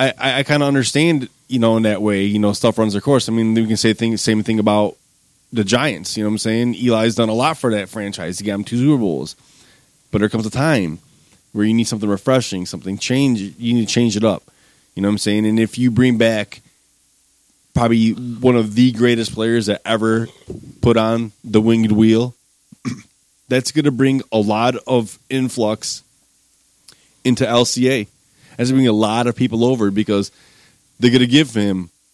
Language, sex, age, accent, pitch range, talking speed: English, male, 20-39, American, 110-125 Hz, 205 wpm